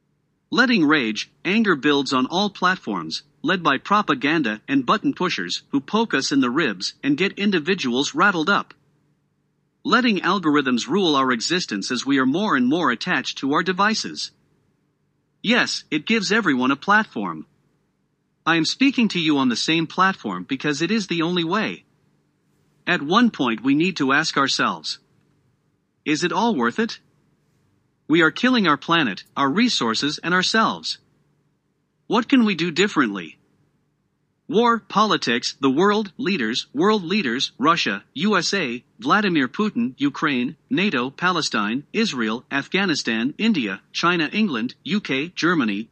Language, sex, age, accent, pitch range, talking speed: English, male, 50-69, American, 145-225 Hz, 140 wpm